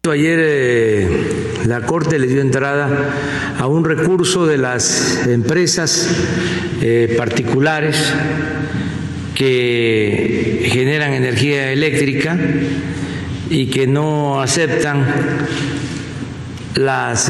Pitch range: 120-150 Hz